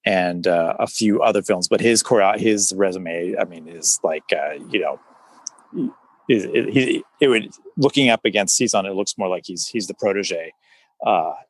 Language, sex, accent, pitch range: English, male, American, 100-125 Hz